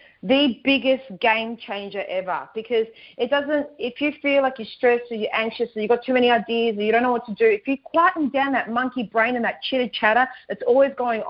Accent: Australian